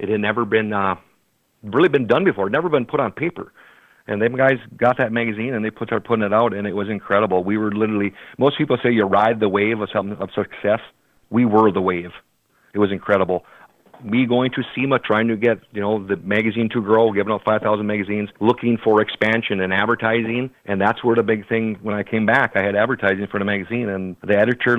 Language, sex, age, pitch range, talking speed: English, male, 50-69, 100-115 Hz, 225 wpm